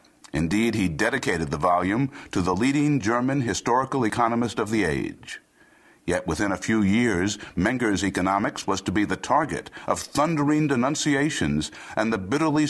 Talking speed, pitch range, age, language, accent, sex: 150 wpm, 105-145 Hz, 60-79, English, American, male